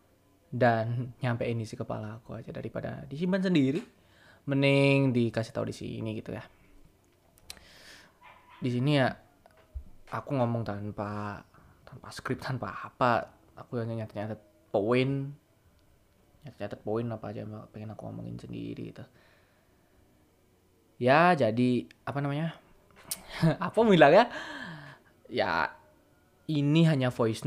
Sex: male